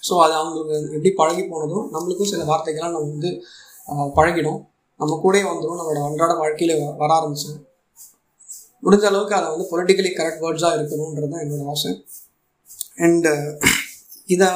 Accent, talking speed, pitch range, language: native, 130 wpm, 150-185 Hz, Tamil